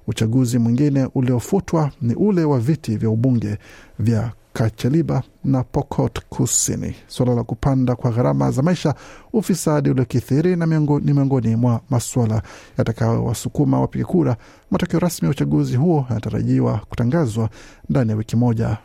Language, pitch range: Swahili, 120-145 Hz